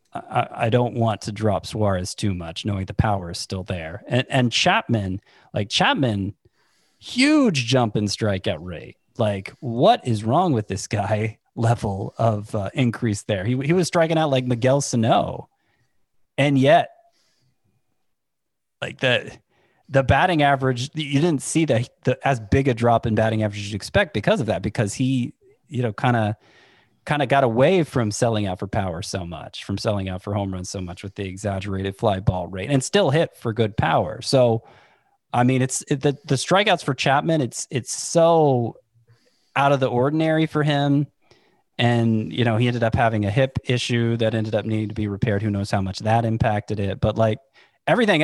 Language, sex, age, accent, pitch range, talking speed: English, male, 30-49, American, 105-135 Hz, 190 wpm